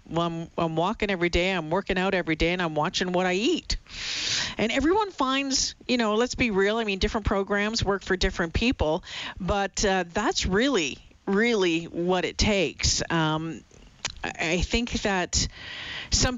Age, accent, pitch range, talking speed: 40-59, American, 170-215 Hz, 170 wpm